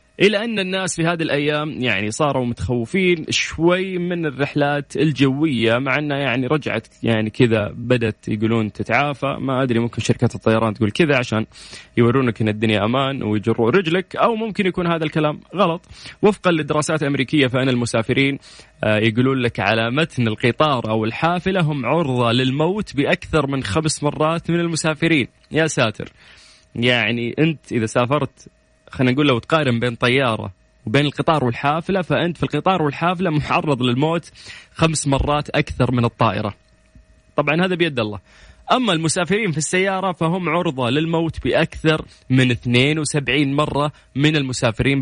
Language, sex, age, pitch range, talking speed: Arabic, male, 20-39, 120-160 Hz, 140 wpm